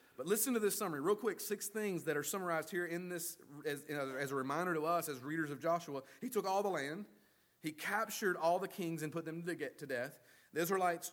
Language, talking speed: English, 230 wpm